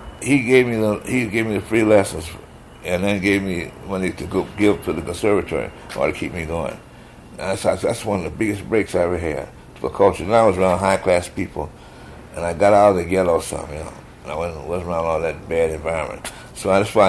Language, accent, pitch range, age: English, American, 85-110 Hz, 60-79